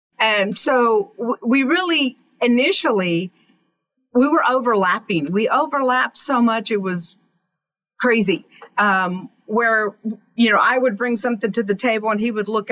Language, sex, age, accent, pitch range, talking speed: English, female, 50-69, American, 200-255 Hz, 140 wpm